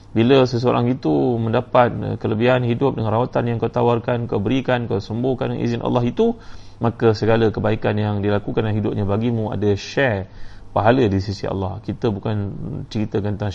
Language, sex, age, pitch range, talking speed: Malay, male, 30-49, 100-120 Hz, 165 wpm